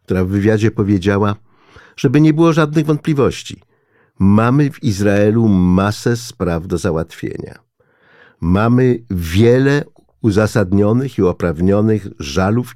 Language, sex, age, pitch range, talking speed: Polish, male, 50-69, 85-125 Hz, 105 wpm